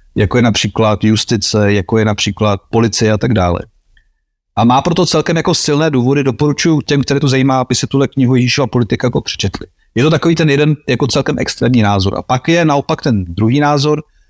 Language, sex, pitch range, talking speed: Slovak, male, 110-140 Hz, 195 wpm